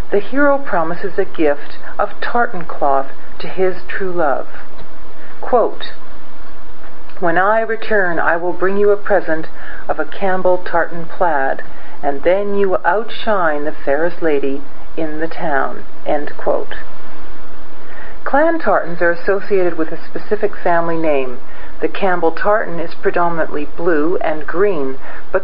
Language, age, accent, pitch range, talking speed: English, 50-69, American, 160-200 Hz, 135 wpm